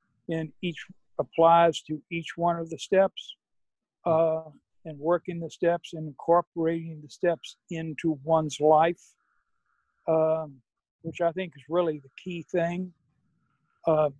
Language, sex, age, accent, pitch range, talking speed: English, male, 60-79, American, 155-175 Hz, 130 wpm